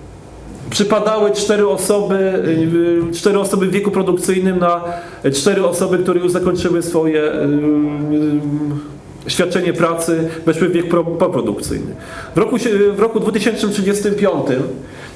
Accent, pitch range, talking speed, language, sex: native, 160-195 Hz, 95 wpm, Polish, male